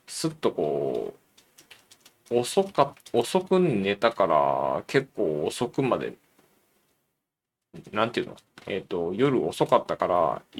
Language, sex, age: Japanese, male, 20-39